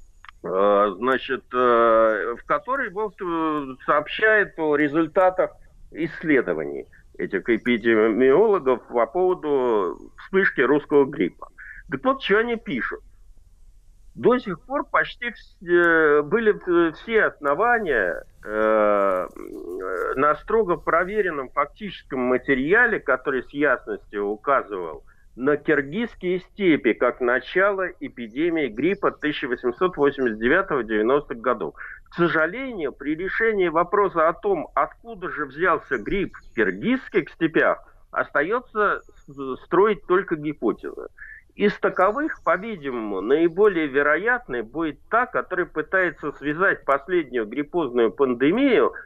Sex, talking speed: male, 95 wpm